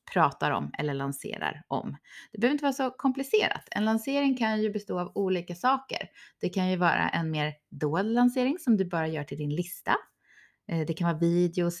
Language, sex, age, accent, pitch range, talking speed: Swedish, female, 30-49, native, 165-230 Hz, 195 wpm